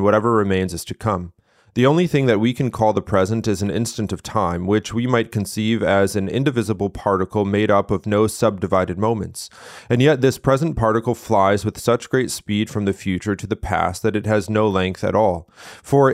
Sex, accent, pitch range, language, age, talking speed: male, American, 100-120 Hz, English, 30-49, 210 wpm